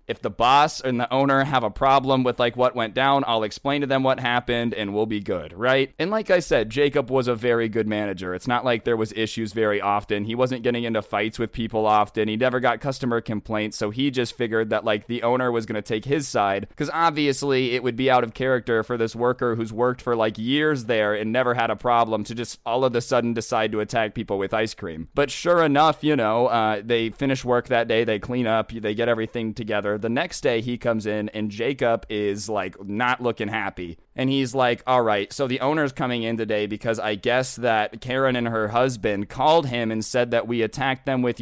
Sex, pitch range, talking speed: male, 110-130 Hz, 240 wpm